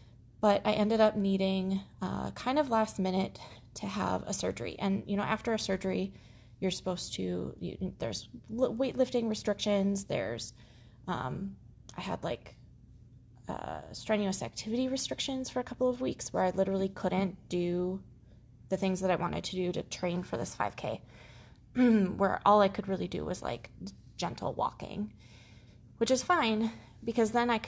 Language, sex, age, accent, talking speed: English, female, 20-39, American, 160 wpm